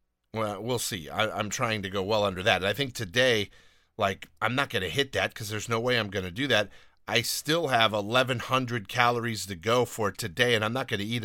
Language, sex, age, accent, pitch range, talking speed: English, male, 40-59, American, 100-120 Hz, 235 wpm